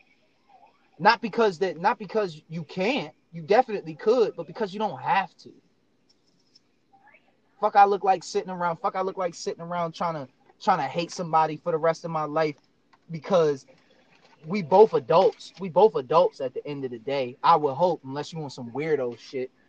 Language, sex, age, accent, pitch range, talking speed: English, male, 20-39, American, 145-205 Hz, 190 wpm